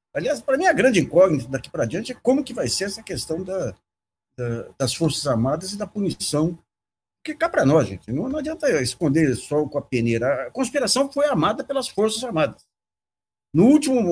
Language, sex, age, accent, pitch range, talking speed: Portuguese, male, 60-79, Brazilian, 135-225 Hz, 200 wpm